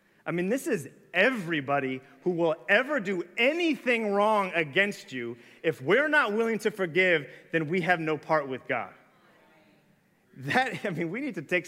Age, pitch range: 30-49, 145-195 Hz